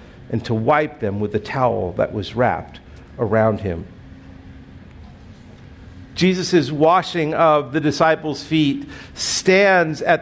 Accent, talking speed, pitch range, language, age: American, 115 wpm, 145-185 Hz, English, 50-69